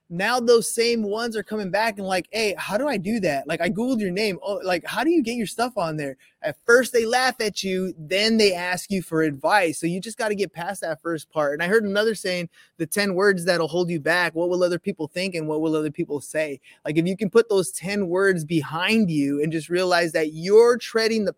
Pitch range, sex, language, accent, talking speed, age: 170-220 Hz, male, English, American, 260 wpm, 20-39